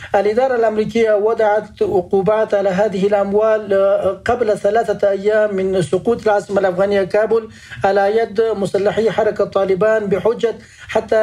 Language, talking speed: Arabic, 120 wpm